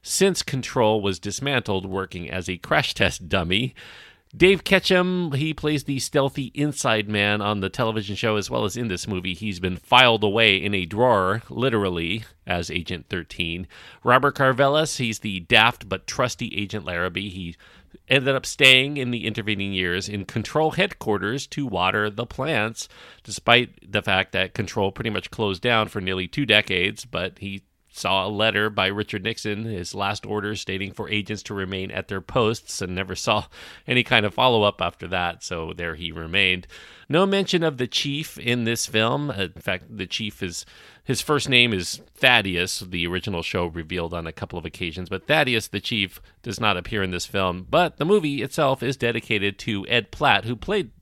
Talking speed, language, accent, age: 185 wpm, English, American, 40-59